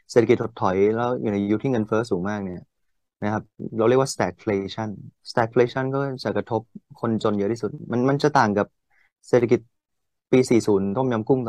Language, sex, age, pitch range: Thai, male, 20-39, 100-115 Hz